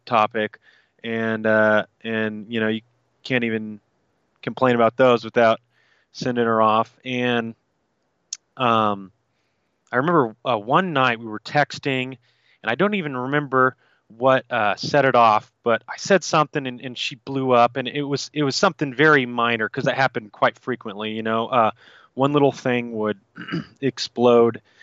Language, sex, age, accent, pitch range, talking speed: English, male, 20-39, American, 110-130 Hz, 160 wpm